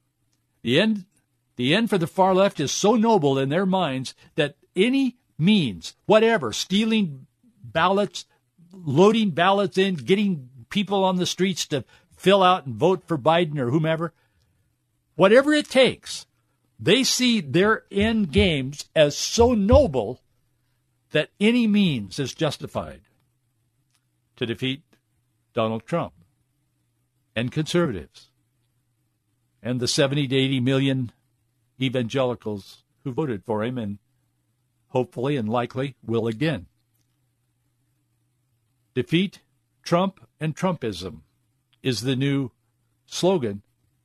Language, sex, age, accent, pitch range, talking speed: English, male, 60-79, American, 120-165 Hz, 115 wpm